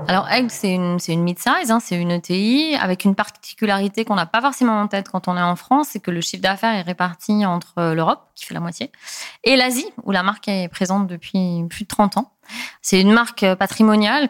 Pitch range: 180-235 Hz